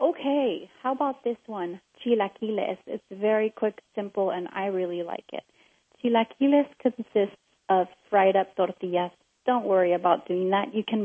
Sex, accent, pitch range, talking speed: female, American, 190-230 Hz, 150 wpm